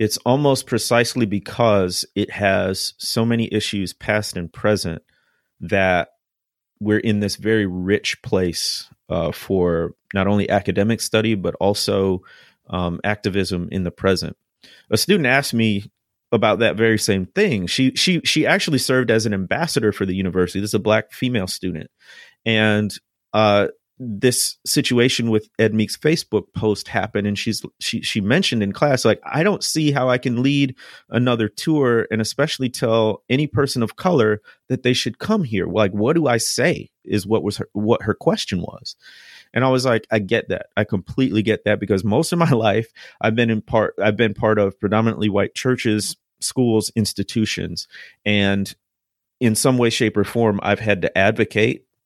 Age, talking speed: 30-49, 175 wpm